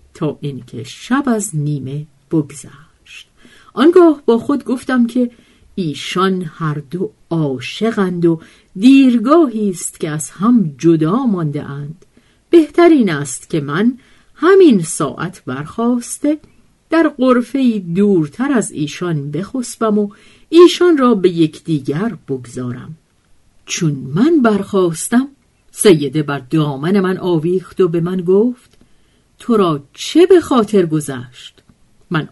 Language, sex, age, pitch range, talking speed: Persian, female, 50-69, 150-240 Hz, 115 wpm